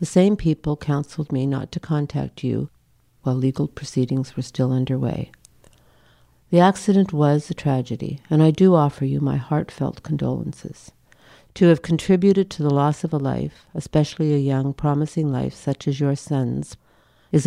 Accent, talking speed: American, 160 wpm